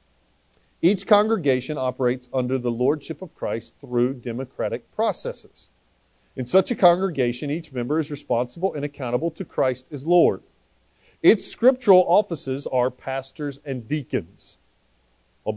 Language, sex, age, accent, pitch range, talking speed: English, male, 40-59, American, 125-170 Hz, 125 wpm